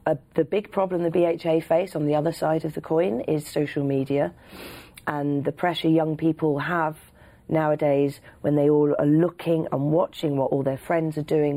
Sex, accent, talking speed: female, British, 190 wpm